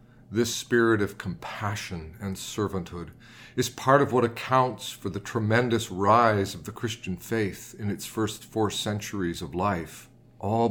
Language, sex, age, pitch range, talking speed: English, male, 40-59, 90-120 Hz, 150 wpm